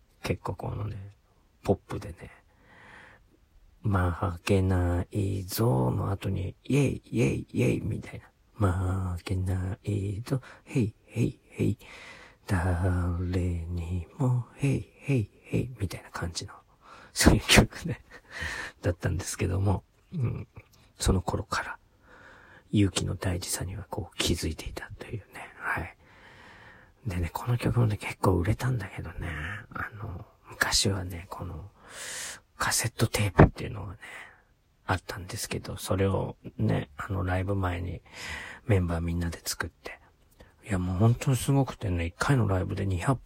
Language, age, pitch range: Japanese, 40-59, 90-115 Hz